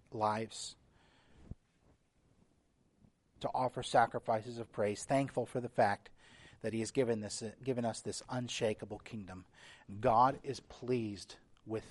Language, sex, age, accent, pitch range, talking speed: English, male, 30-49, American, 110-130 Hz, 120 wpm